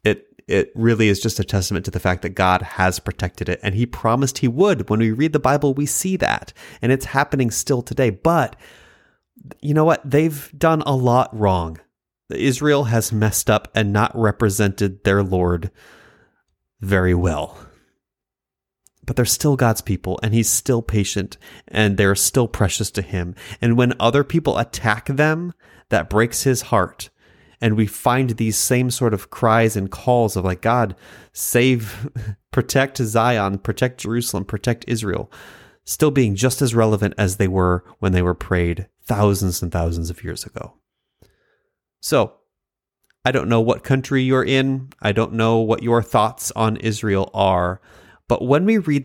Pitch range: 100-130 Hz